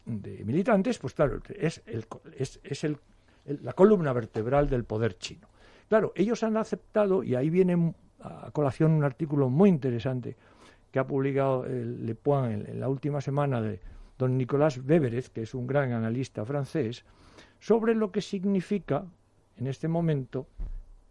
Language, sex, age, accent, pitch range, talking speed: Spanish, male, 60-79, Spanish, 115-165 Hz, 160 wpm